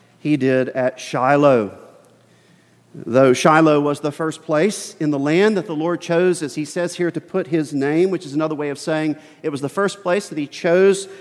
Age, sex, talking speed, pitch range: 40-59, male, 210 wpm, 125-175 Hz